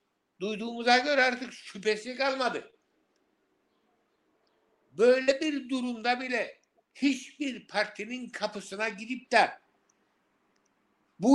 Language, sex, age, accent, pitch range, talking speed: Turkish, male, 60-79, native, 215-275 Hz, 80 wpm